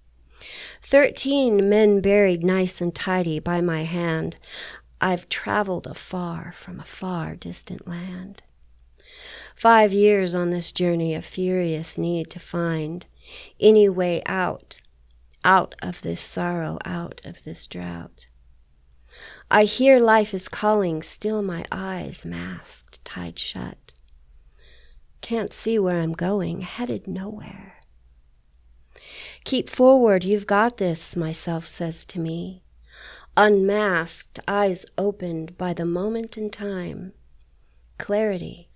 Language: English